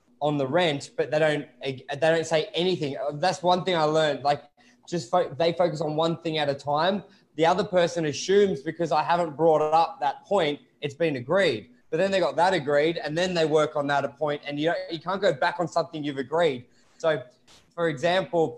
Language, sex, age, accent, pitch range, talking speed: English, male, 20-39, Australian, 145-175 Hz, 220 wpm